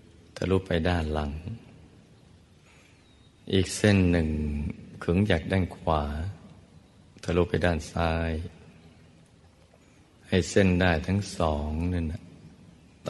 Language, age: Thai, 60-79